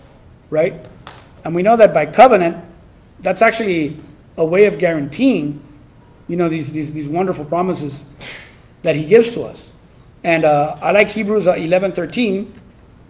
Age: 30-49